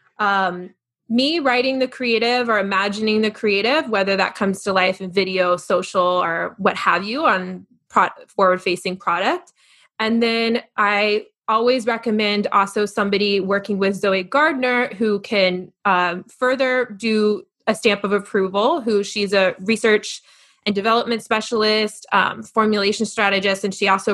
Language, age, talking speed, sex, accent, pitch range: English, 20-39, 145 wpm, female, American, 195-235 Hz